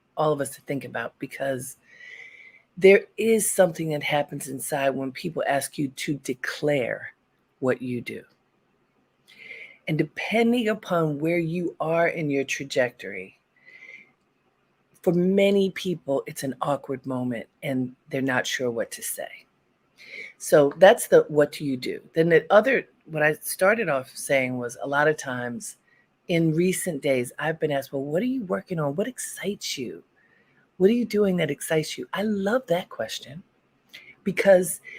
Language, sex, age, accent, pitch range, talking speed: English, female, 40-59, American, 140-195 Hz, 160 wpm